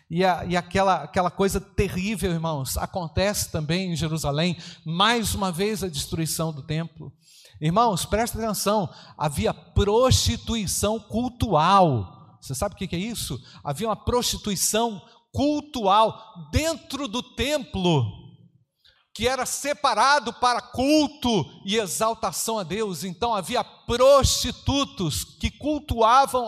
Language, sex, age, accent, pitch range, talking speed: Portuguese, male, 50-69, Brazilian, 170-235 Hz, 120 wpm